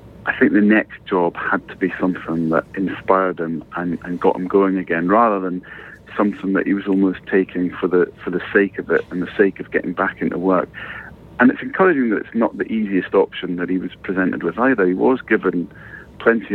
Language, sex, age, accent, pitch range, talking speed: English, male, 40-59, British, 90-105 Hz, 220 wpm